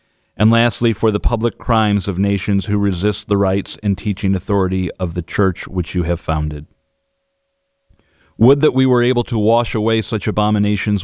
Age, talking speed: 40-59, 175 wpm